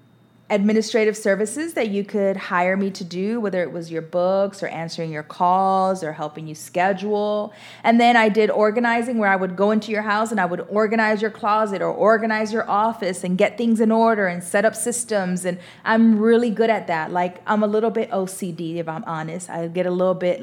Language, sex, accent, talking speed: English, female, American, 215 wpm